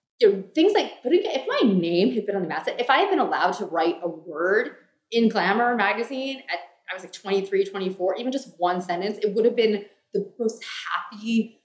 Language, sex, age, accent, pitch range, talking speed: English, female, 20-39, American, 185-240 Hz, 215 wpm